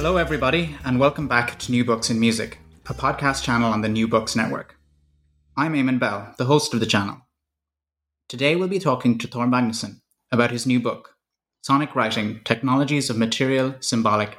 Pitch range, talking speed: 115-135 Hz, 180 wpm